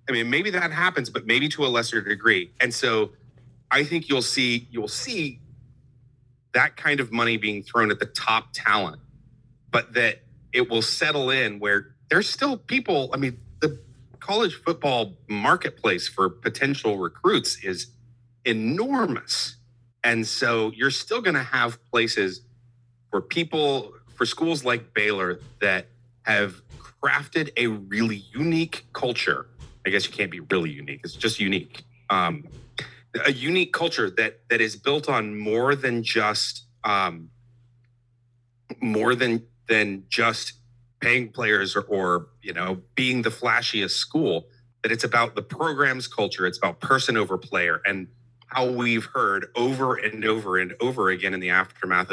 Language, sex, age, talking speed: English, male, 30-49, 150 wpm